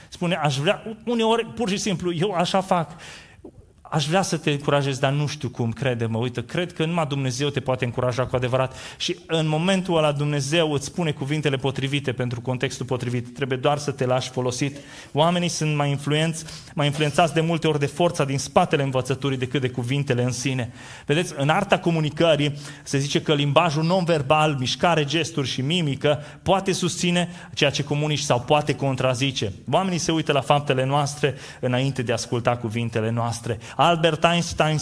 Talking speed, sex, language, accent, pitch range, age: 175 wpm, male, Romanian, native, 125-155 Hz, 30-49